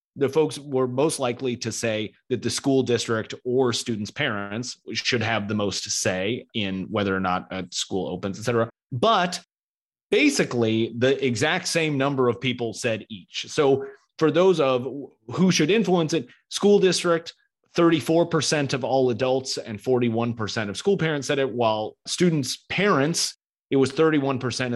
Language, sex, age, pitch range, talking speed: English, male, 30-49, 115-150 Hz, 160 wpm